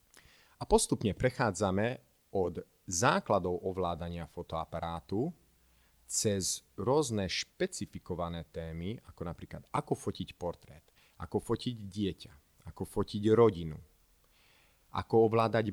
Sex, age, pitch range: male, 30-49, 85-110 Hz